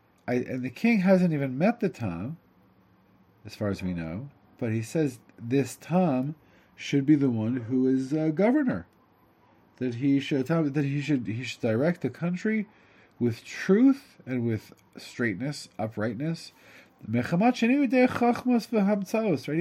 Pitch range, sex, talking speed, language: 110-155 Hz, male, 155 wpm, English